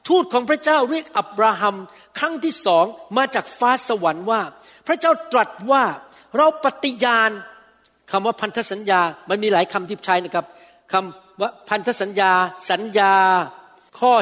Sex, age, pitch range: male, 60-79, 190-255 Hz